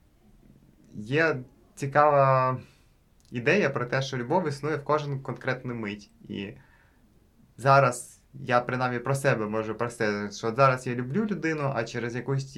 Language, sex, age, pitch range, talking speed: Ukrainian, male, 20-39, 110-135 Hz, 135 wpm